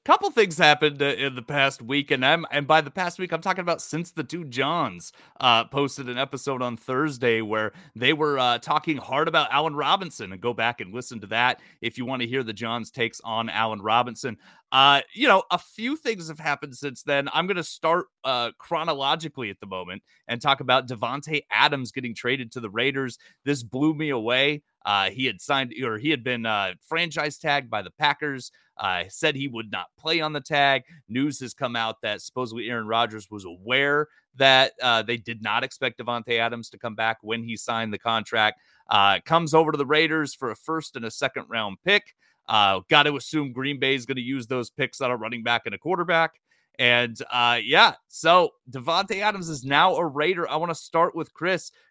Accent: American